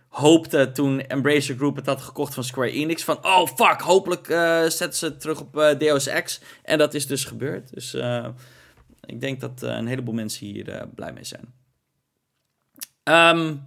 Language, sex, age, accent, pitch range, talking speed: Dutch, male, 20-39, Dutch, 125-155 Hz, 190 wpm